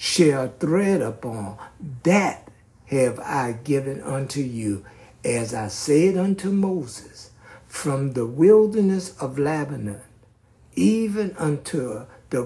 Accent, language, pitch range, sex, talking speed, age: American, English, 110-170 Hz, male, 105 wpm, 60-79